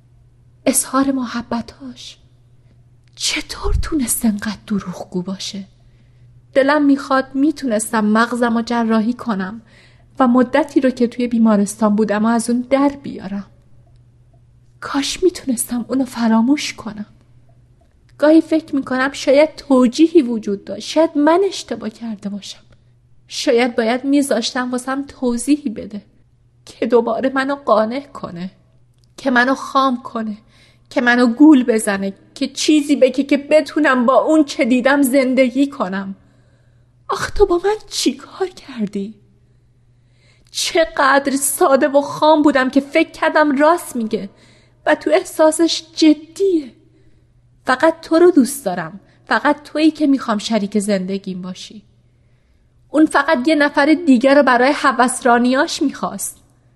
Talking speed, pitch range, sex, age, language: 120 wpm, 195-285 Hz, female, 30-49, Persian